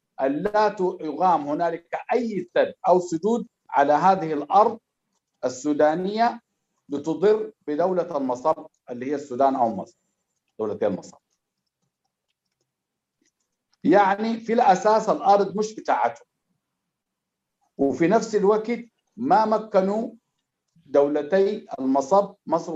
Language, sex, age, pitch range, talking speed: Arabic, male, 60-79, 145-205 Hz, 90 wpm